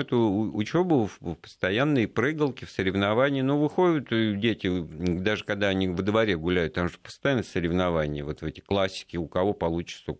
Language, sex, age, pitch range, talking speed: Russian, male, 50-69, 85-110 Hz, 170 wpm